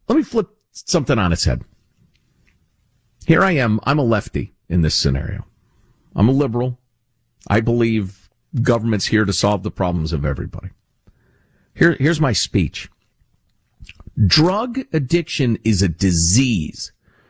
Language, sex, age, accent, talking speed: English, male, 50-69, American, 130 wpm